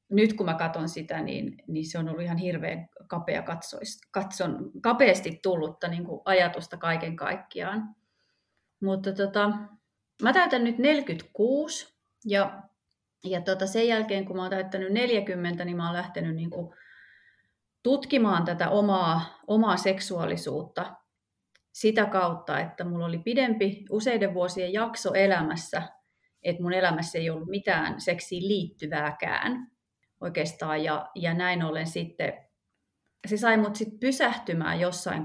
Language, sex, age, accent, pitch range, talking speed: Finnish, female, 30-49, native, 165-210 Hz, 125 wpm